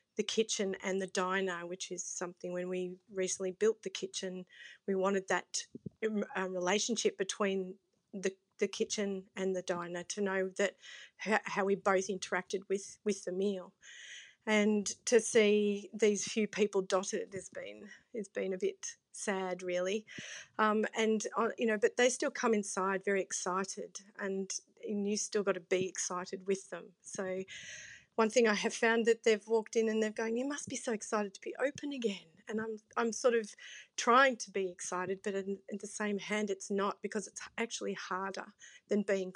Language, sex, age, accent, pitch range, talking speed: English, female, 40-59, Australian, 190-220 Hz, 180 wpm